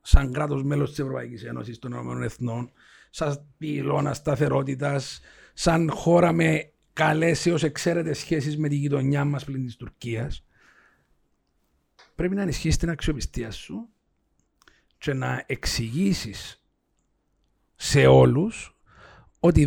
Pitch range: 120-170 Hz